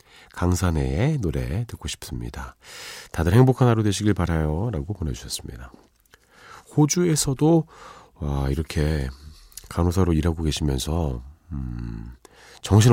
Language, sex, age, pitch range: Korean, male, 40-59, 75-125 Hz